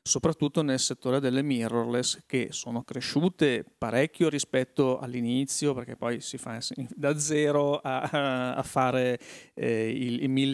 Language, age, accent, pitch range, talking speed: Italian, 40-59, native, 120-140 Hz, 115 wpm